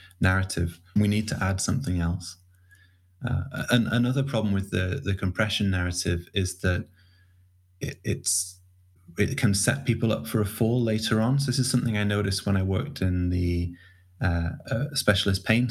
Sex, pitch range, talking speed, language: male, 90-105 Hz, 165 wpm, English